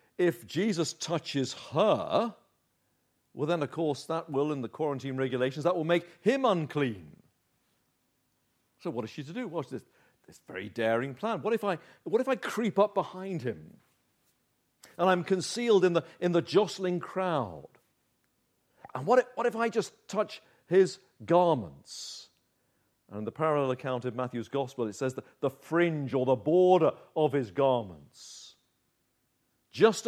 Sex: male